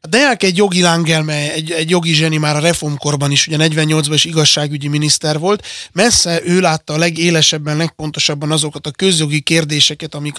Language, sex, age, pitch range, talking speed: Hungarian, male, 20-39, 145-180 Hz, 175 wpm